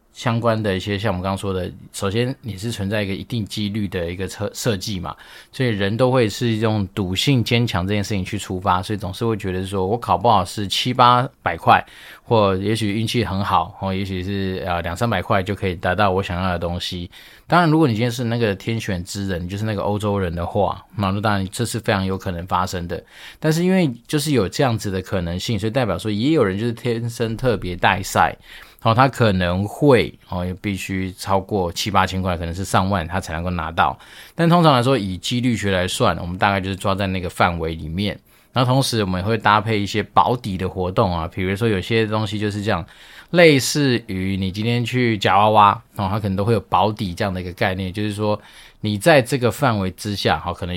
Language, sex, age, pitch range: Chinese, male, 20-39, 95-115 Hz